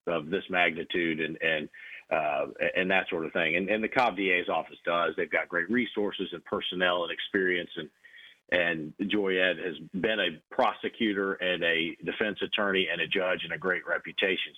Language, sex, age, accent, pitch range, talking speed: English, male, 40-59, American, 90-105 Hz, 185 wpm